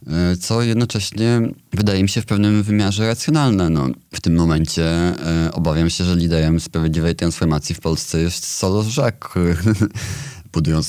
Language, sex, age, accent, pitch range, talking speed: Polish, male, 30-49, native, 75-90 Hz, 145 wpm